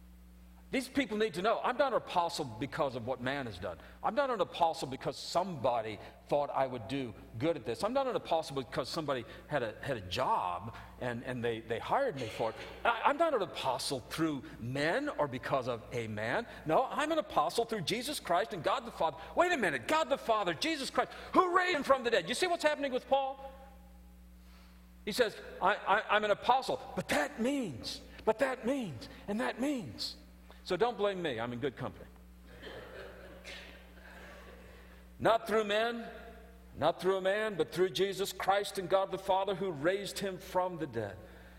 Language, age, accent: English, 50-69, American